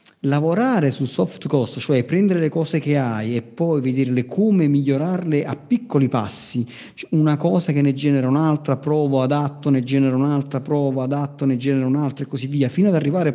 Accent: native